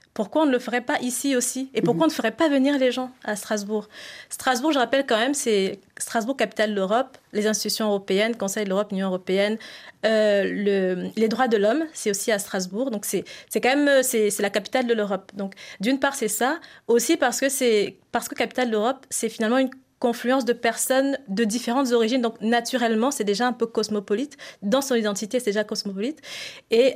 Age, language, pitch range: 20-39, French, 215-260 Hz